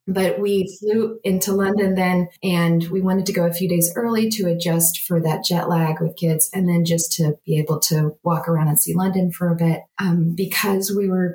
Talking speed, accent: 220 wpm, American